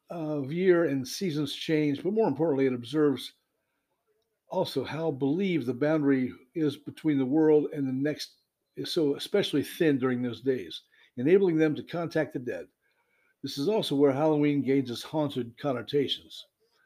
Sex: male